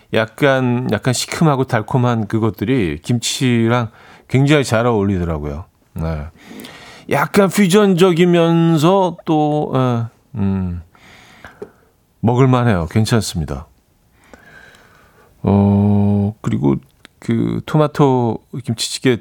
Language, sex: Korean, male